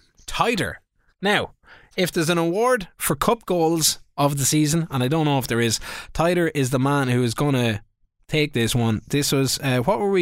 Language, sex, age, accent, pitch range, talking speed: English, male, 20-39, Irish, 120-185 Hz, 210 wpm